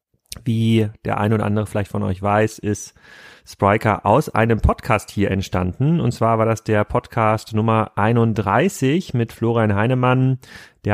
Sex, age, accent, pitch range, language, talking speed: male, 30-49, German, 105-125 Hz, German, 155 wpm